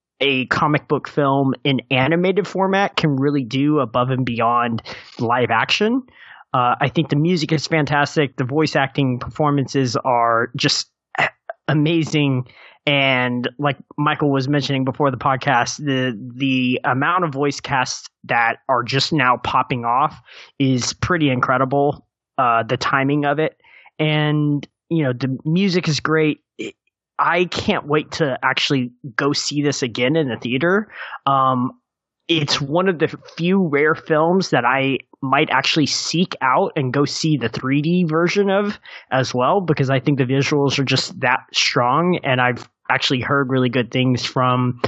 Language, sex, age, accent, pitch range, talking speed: English, male, 20-39, American, 130-155 Hz, 155 wpm